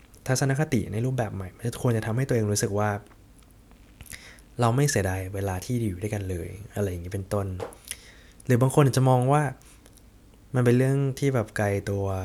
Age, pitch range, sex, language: 20-39, 100-120 Hz, male, Thai